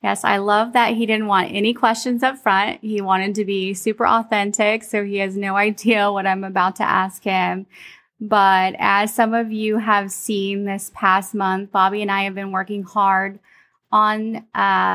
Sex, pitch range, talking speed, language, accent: female, 185-210 Hz, 190 wpm, English, American